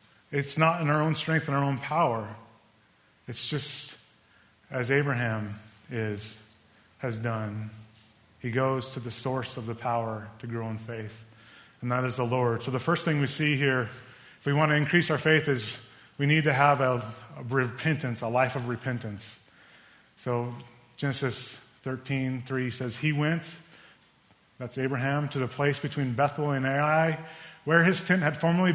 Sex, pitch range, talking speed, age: male, 120-155 Hz, 165 wpm, 30-49